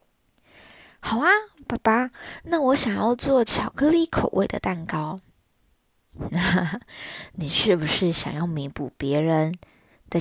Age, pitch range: 20-39, 175-240 Hz